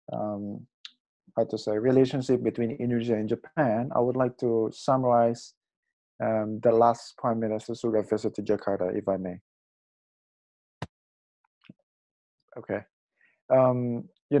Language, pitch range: Indonesian, 110-125 Hz